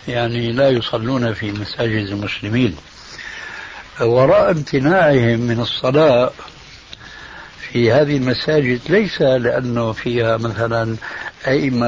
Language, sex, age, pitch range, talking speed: Arabic, male, 60-79, 115-155 Hz, 90 wpm